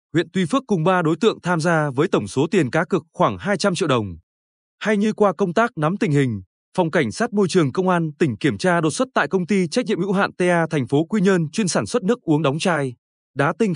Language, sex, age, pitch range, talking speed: Vietnamese, male, 20-39, 145-195 Hz, 260 wpm